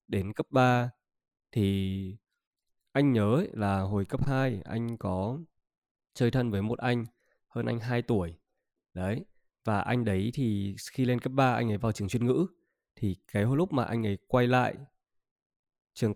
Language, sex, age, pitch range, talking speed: Vietnamese, male, 20-39, 100-125 Hz, 170 wpm